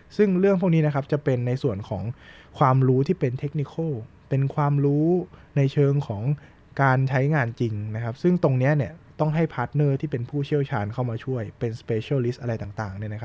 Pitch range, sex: 115-145 Hz, male